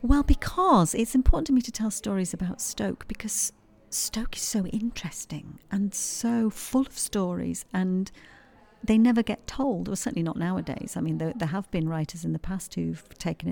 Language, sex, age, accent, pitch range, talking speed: English, female, 40-59, British, 165-205 Hz, 190 wpm